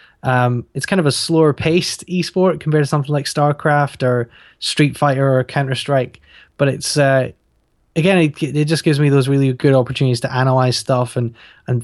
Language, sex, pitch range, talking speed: English, male, 120-145 Hz, 180 wpm